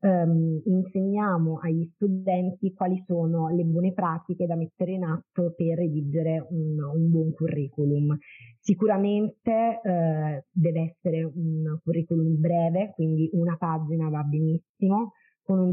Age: 20-39